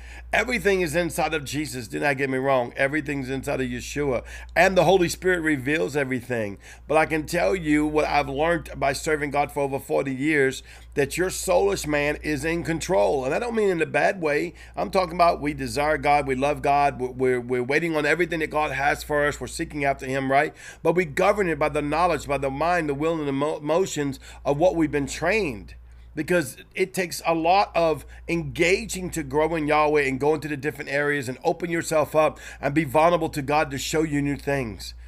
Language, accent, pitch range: English, American, 140-170 Hz